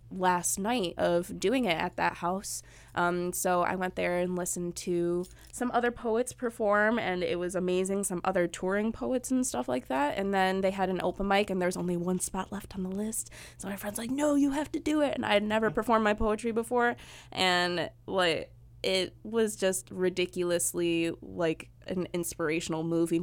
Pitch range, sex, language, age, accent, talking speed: 175-210 Hz, female, English, 20-39, American, 195 wpm